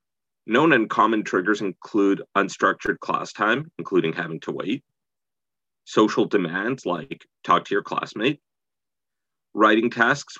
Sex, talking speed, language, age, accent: male, 120 wpm, English, 30-49, American